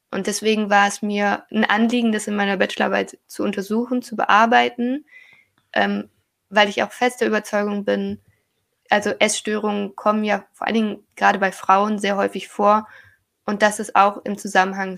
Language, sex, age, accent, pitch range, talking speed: German, female, 20-39, German, 195-230 Hz, 170 wpm